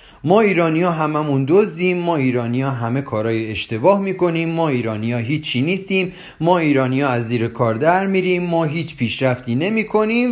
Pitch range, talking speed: 115-180 Hz, 140 wpm